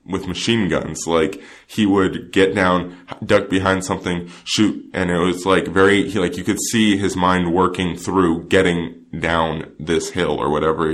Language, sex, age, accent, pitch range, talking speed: English, male, 20-39, American, 85-105 Hz, 175 wpm